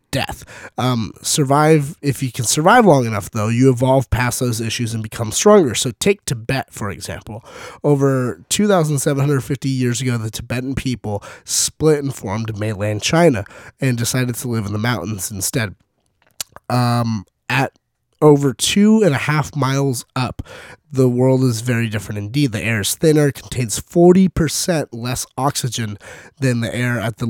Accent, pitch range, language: American, 115-145 Hz, English